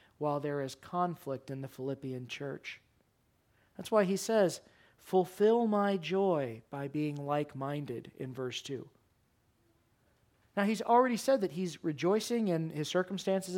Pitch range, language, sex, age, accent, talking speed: 130-175 Hz, English, male, 40-59, American, 135 wpm